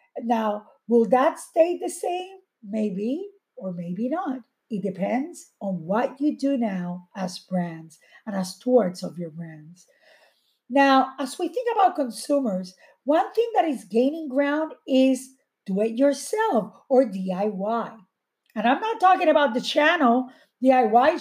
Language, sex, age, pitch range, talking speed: English, female, 50-69, 240-350 Hz, 140 wpm